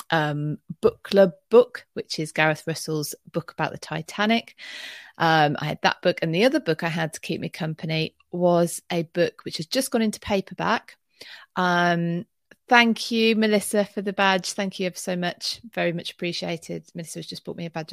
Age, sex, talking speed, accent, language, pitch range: 30-49, female, 190 wpm, British, English, 155-190 Hz